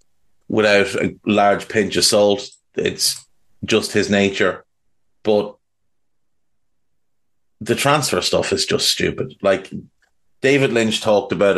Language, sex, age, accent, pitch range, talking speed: English, male, 30-49, Irish, 95-115 Hz, 115 wpm